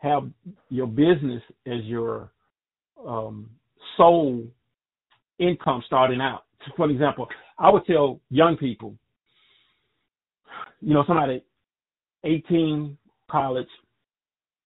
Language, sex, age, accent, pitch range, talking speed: English, male, 40-59, American, 130-160 Hz, 90 wpm